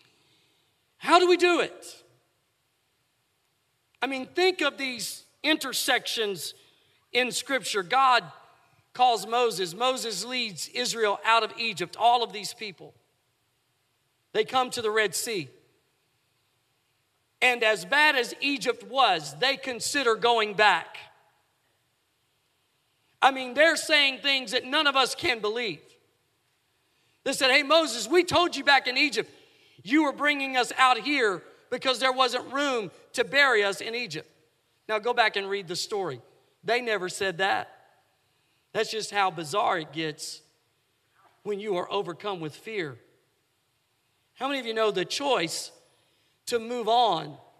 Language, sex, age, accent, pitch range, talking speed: English, male, 40-59, American, 195-275 Hz, 140 wpm